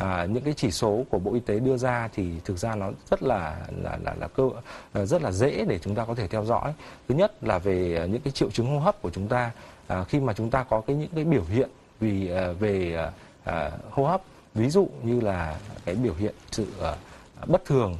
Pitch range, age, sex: 100-135 Hz, 20-39, male